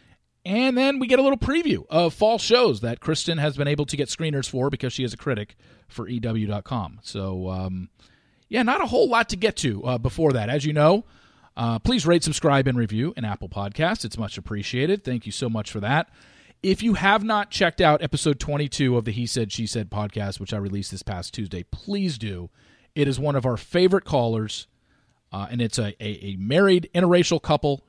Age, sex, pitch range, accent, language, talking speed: 40-59, male, 110-155 Hz, American, English, 215 wpm